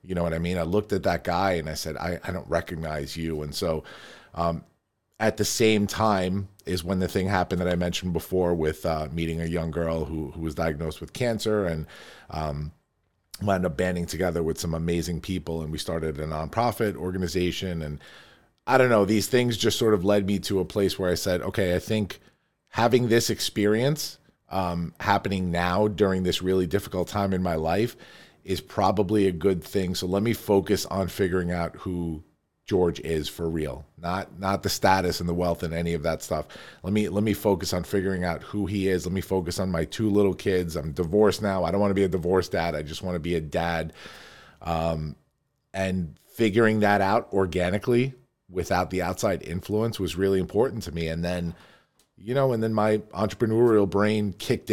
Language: English